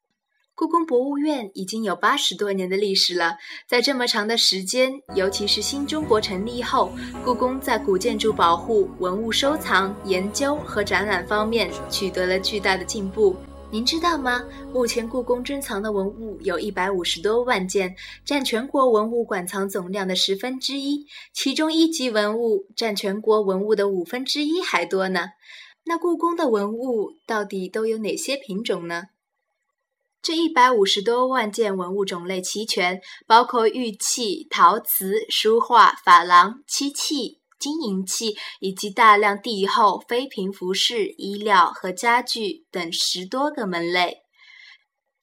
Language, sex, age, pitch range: Chinese, female, 20-39, 195-270 Hz